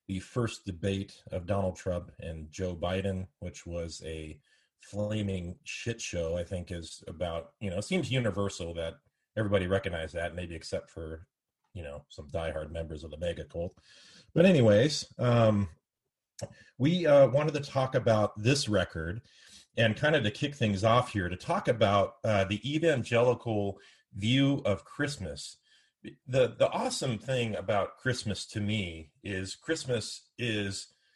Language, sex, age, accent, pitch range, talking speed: English, male, 30-49, American, 90-115 Hz, 150 wpm